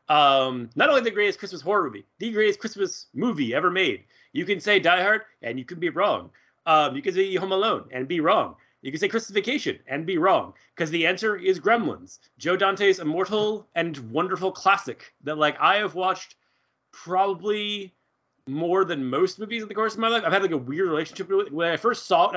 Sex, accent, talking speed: male, American, 220 wpm